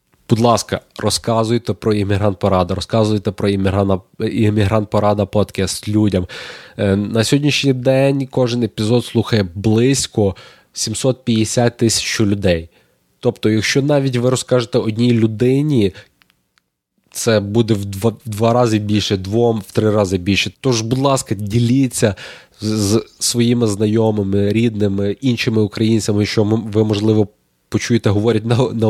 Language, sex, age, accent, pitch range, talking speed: Ukrainian, male, 20-39, native, 105-115 Hz, 125 wpm